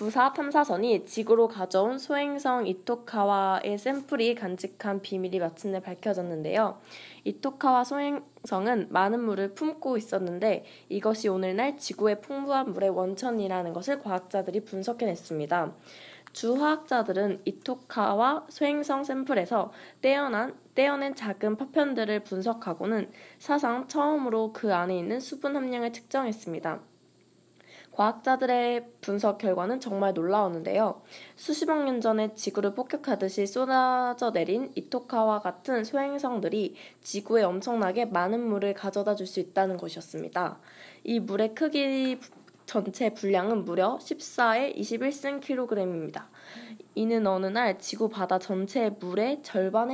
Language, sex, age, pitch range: Korean, female, 20-39, 195-260 Hz